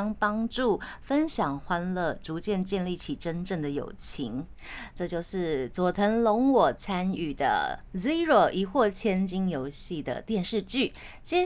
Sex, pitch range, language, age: female, 175-250 Hz, Chinese, 20-39